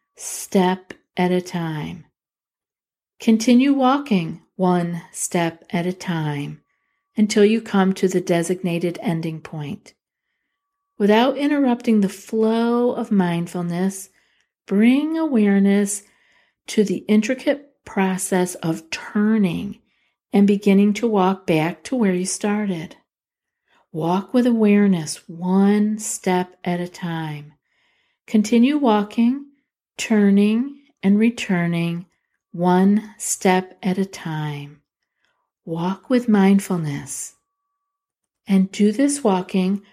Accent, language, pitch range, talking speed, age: American, English, 180-225 Hz, 100 wpm, 50-69